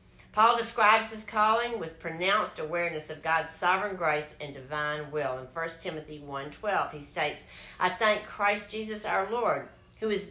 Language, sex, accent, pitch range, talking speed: English, female, American, 155-215 Hz, 165 wpm